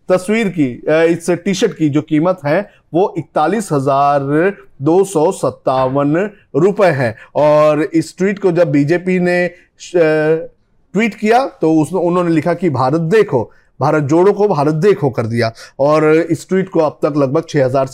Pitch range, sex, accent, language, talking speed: 150-205 Hz, male, native, Hindi, 135 wpm